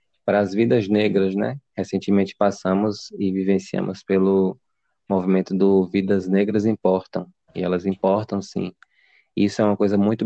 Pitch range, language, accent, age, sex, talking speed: 95-105 Hz, Portuguese, Brazilian, 20-39, male, 140 wpm